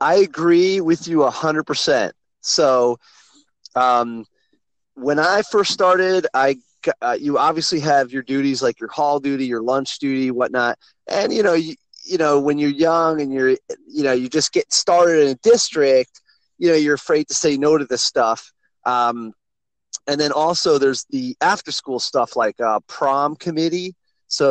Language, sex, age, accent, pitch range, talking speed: English, male, 30-49, American, 130-185 Hz, 175 wpm